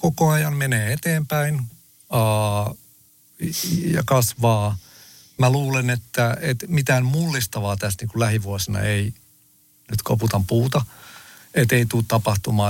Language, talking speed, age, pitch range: Finnish, 120 wpm, 50-69, 110-130 Hz